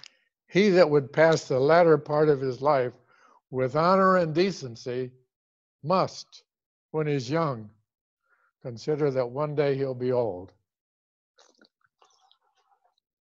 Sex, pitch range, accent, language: male, 125-165 Hz, American, English